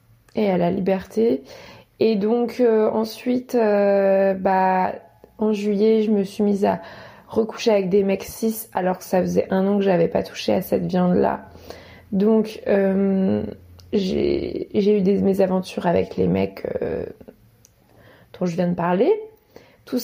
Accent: French